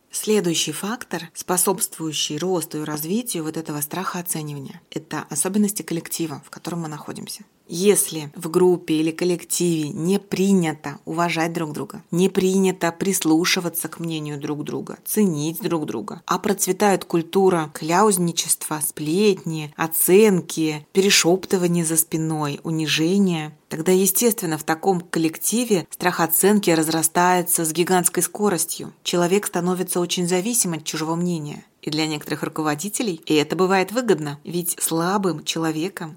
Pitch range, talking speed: 160-185 Hz, 125 wpm